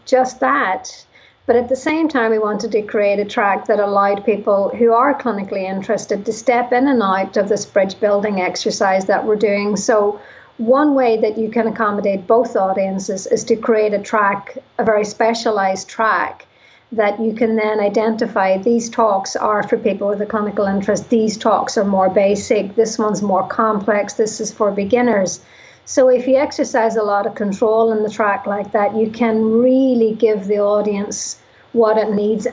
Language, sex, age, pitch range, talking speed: English, female, 50-69, 205-230 Hz, 185 wpm